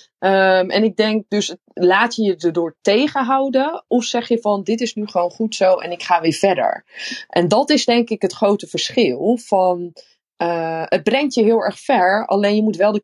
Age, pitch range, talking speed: 20-39, 170-225 Hz, 205 wpm